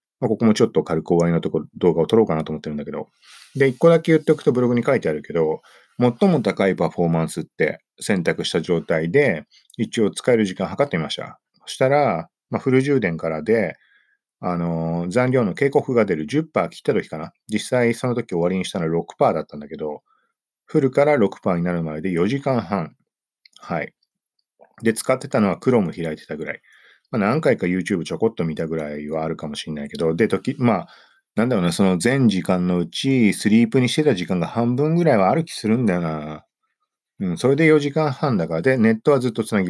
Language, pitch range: Japanese, 80-130 Hz